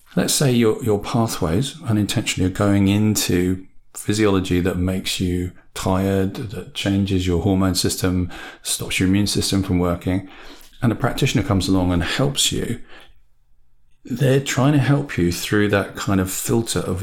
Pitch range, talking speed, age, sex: 90-110 Hz, 155 wpm, 40-59, male